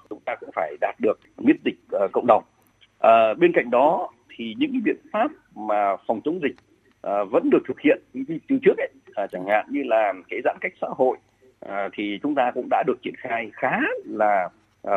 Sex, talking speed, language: male, 215 wpm, Vietnamese